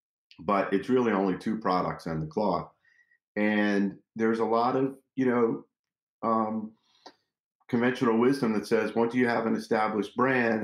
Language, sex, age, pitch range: English, male, 40-59, 90-115 Hz